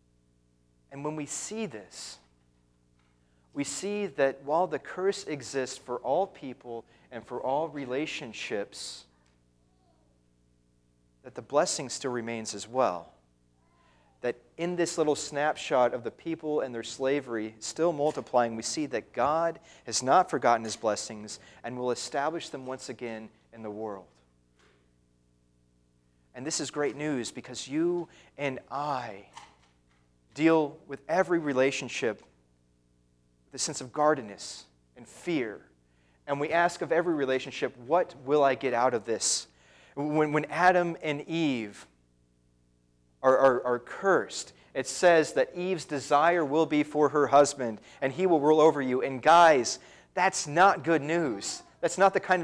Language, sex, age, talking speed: English, male, 40-59, 140 wpm